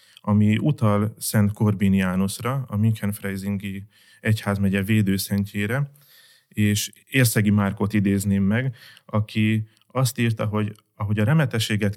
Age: 30-49